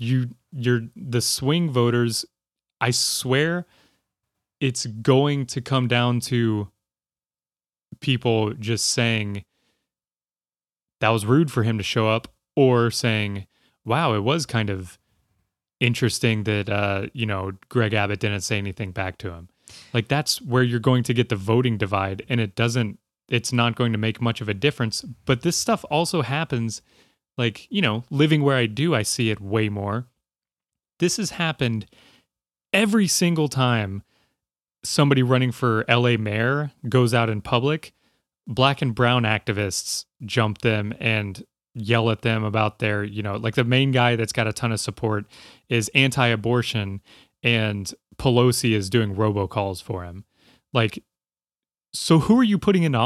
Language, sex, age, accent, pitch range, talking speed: English, male, 20-39, American, 105-130 Hz, 155 wpm